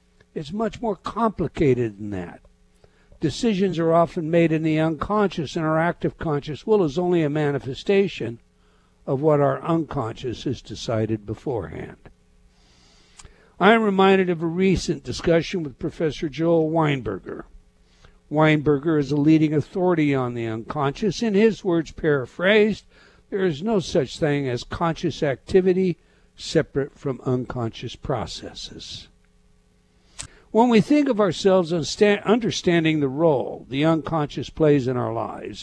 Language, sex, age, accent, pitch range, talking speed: English, male, 60-79, American, 120-180 Hz, 130 wpm